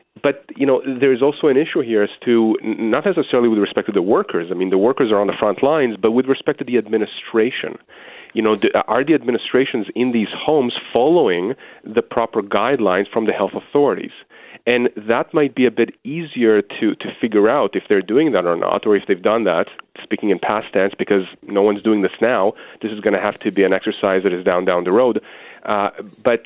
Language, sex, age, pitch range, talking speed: English, male, 30-49, 100-125 Hz, 220 wpm